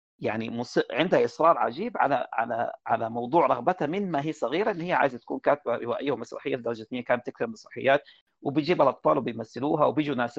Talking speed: 175 wpm